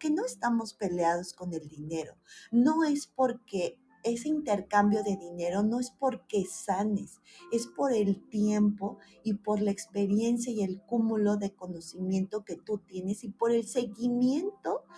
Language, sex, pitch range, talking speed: Spanish, female, 180-240 Hz, 150 wpm